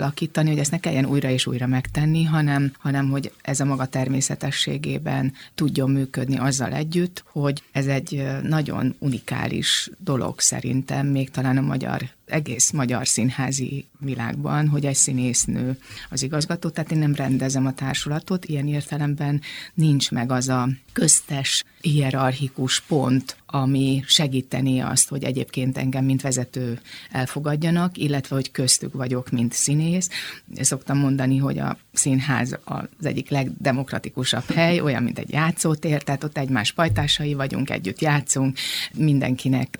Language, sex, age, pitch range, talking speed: Hungarian, female, 30-49, 130-150 Hz, 135 wpm